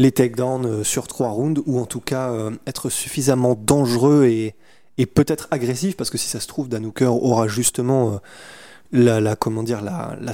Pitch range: 115-140 Hz